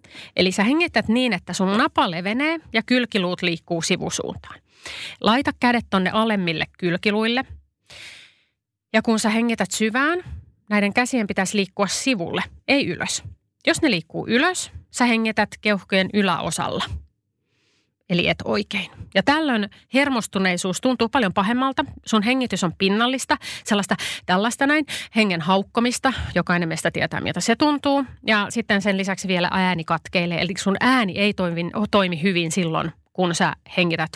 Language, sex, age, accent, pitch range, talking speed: Finnish, female, 30-49, native, 180-235 Hz, 140 wpm